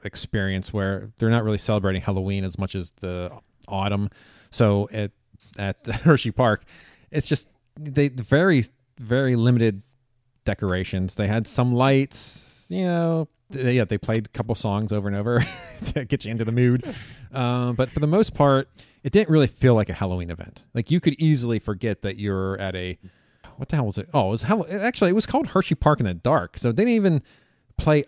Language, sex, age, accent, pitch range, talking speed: English, male, 30-49, American, 105-135 Hz, 190 wpm